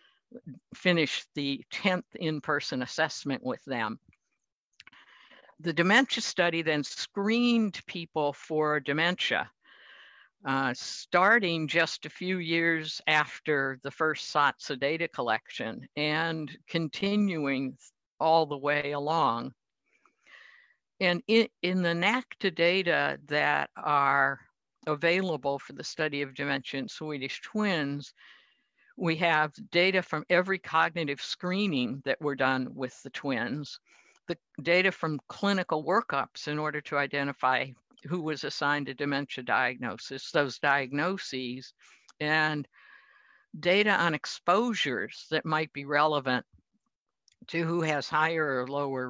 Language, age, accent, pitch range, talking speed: English, 60-79, American, 140-175 Hz, 115 wpm